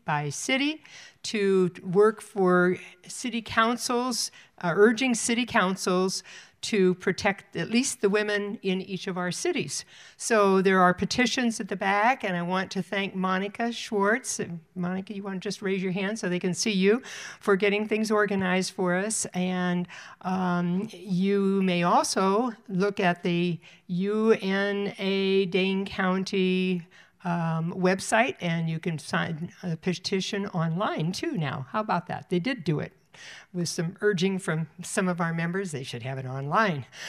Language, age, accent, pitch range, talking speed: English, 60-79, American, 175-205 Hz, 155 wpm